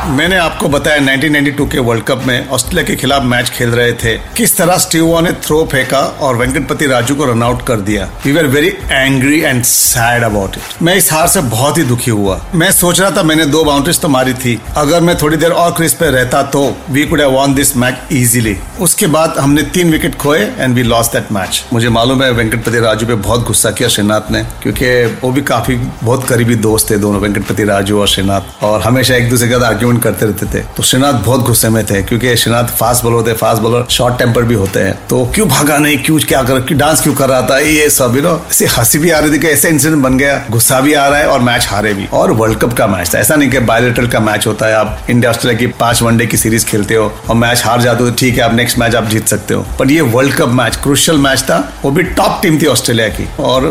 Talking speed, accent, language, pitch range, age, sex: 220 wpm, native, Hindi, 115-145 Hz, 40-59, male